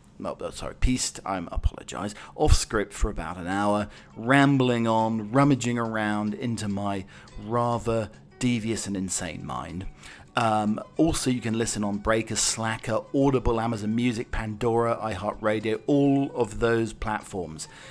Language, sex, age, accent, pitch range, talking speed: English, male, 40-59, British, 105-125 Hz, 130 wpm